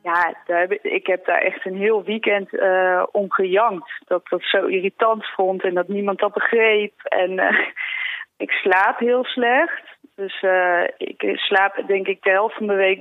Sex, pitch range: female, 180-215 Hz